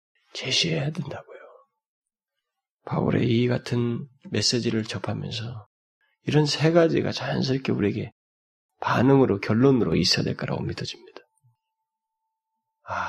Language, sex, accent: Korean, male, native